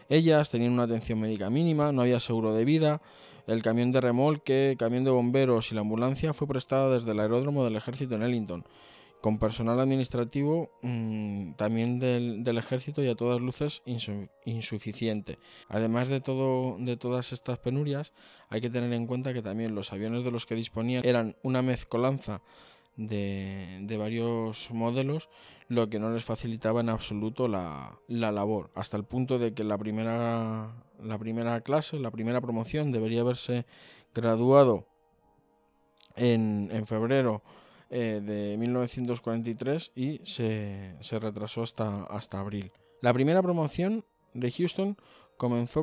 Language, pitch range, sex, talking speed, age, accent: Spanish, 110-130 Hz, male, 145 wpm, 20-39, Spanish